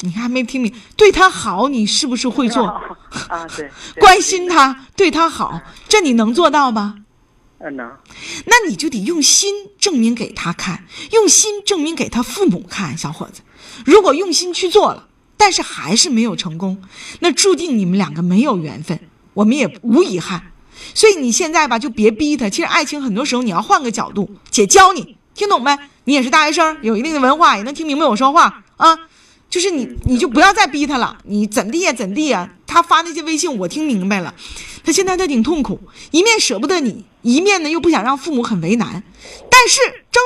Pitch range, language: 215-350 Hz, Chinese